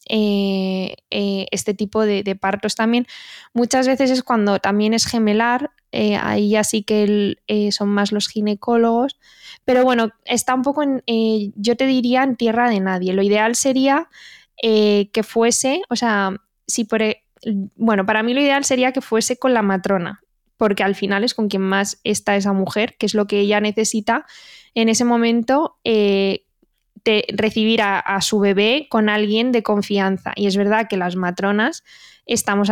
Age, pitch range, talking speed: 20-39, 200-235 Hz, 180 wpm